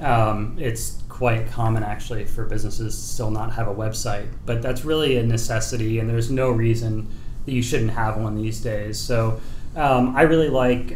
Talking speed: 180 wpm